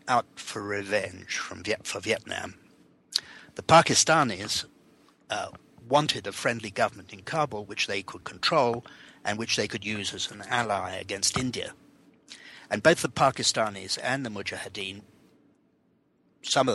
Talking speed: 140 wpm